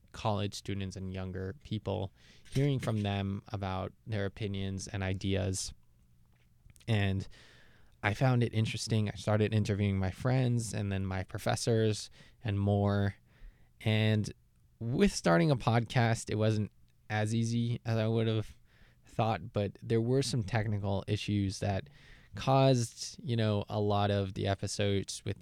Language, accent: English, American